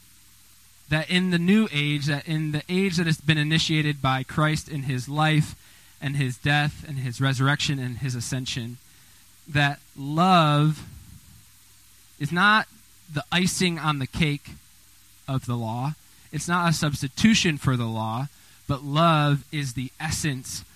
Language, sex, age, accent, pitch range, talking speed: English, male, 20-39, American, 105-150 Hz, 145 wpm